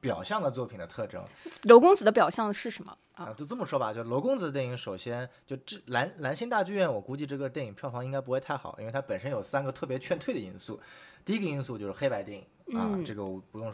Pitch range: 120-165 Hz